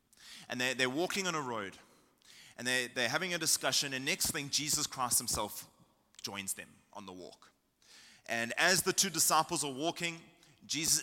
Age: 30-49